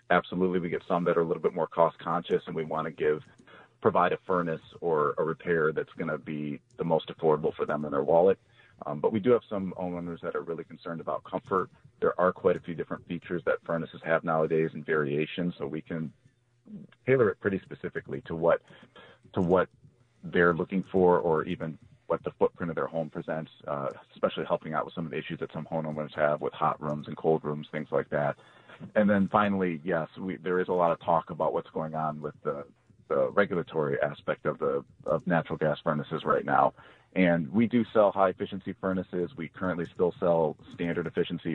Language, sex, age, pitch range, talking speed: English, male, 40-59, 80-100 Hz, 205 wpm